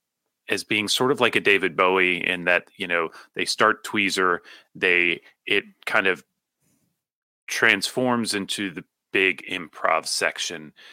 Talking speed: 135 wpm